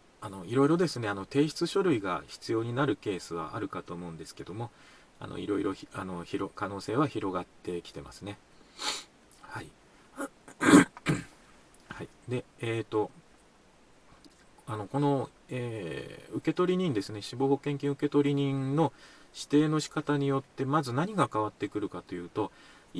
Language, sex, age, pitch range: Japanese, male, 40-59, 100-140 Hz